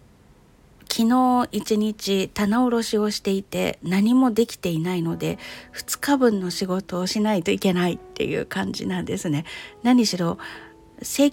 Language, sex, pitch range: Japanese, female, 180-230 Hz